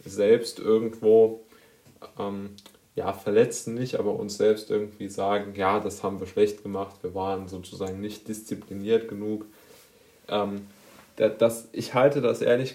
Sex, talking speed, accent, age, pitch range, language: male, 130 wpm, German, 20-39, 100-110 Hz, German